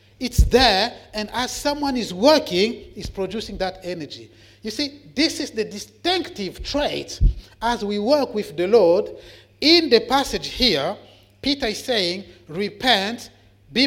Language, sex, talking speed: English, male, 145 wpm